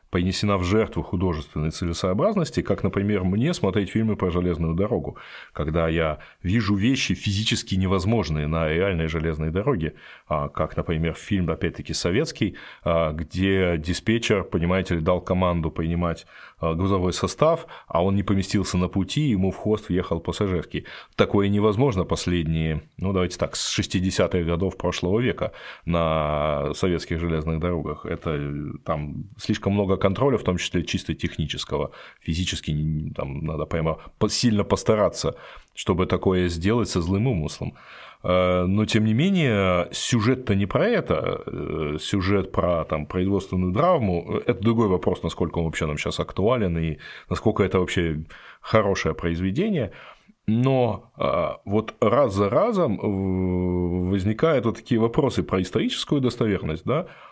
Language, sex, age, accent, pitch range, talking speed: Russian, male, 20-39, native, 85-105 Hz, 130 wpm